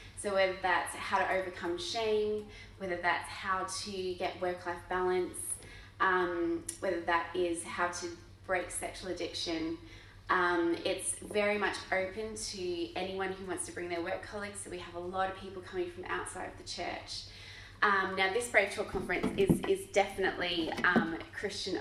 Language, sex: English, female